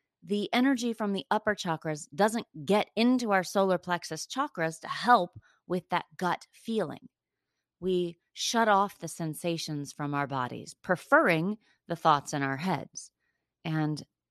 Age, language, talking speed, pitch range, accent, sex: 30-49, English, 145 wpm, 165-230 Hz, American, female